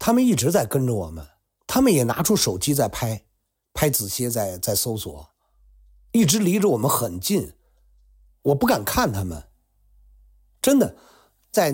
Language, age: Chinese, 50-69